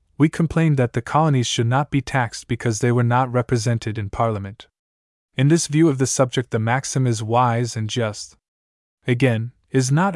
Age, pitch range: 20-39, 115-135 Hz